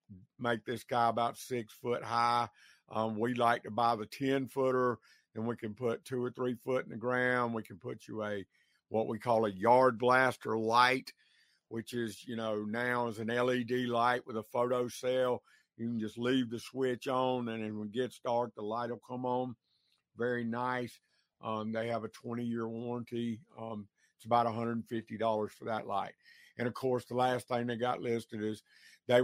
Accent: American